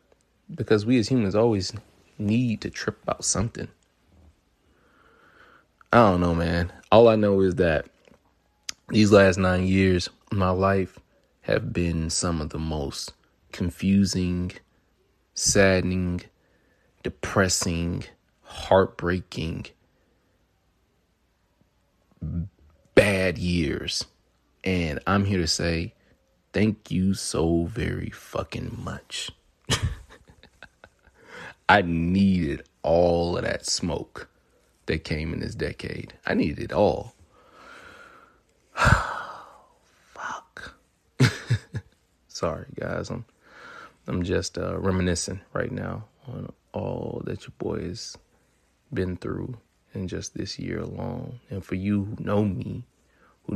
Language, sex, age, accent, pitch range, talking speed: English, male, 30-49, American, 85-105 Hz, 105 wpm